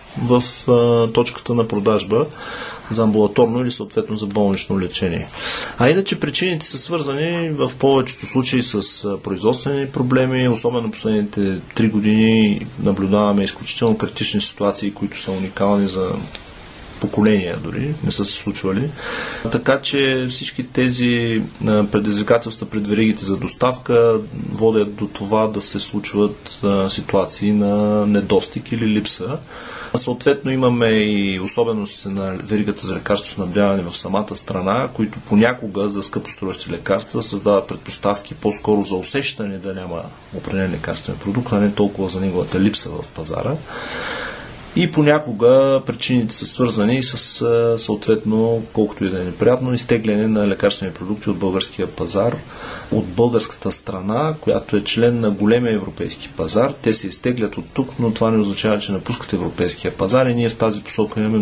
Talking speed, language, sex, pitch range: 145 wpm, Bulgarian, male, 100-120 Hz